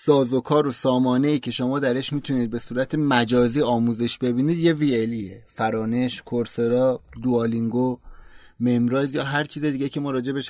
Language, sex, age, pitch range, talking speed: Persian, male, 30-49, 125-155 Hz, 165 wpm